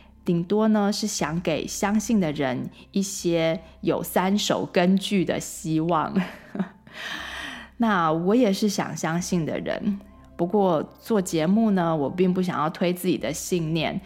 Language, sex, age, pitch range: Chinese, female, 20-39, 165-205 Hz